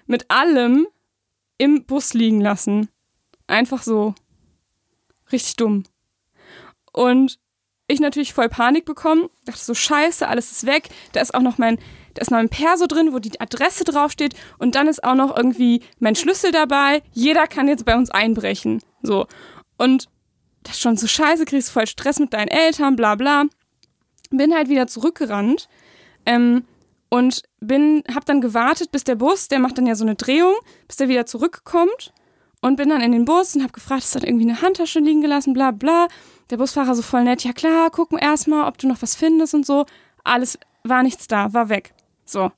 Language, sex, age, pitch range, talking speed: German, female, 20-39, 235-300 Hz, 185 wpm